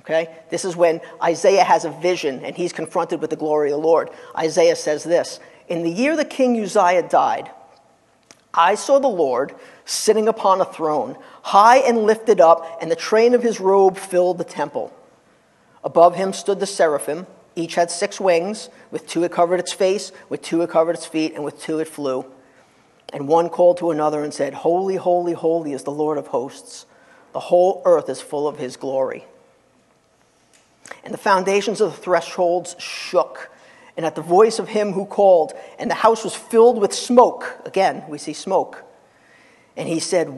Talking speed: 185 wpm